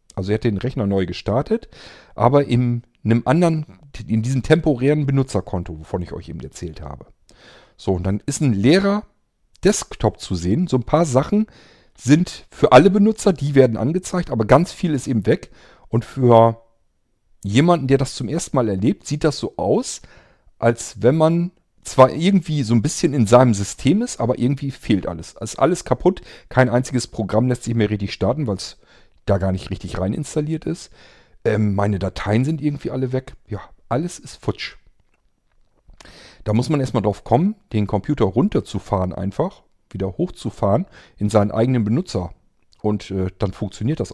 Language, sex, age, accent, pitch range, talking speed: German, male, 40-59, German, 105-150 Hz, 175 wpm